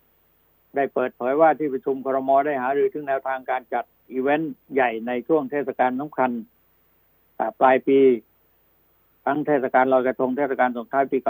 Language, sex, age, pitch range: Thai, male, 60-79, 105-145 Hz